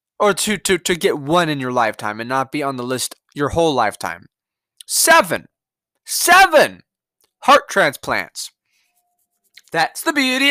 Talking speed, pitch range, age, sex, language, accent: 145 wpm, 165-235 Hz, 20-39, male, English, American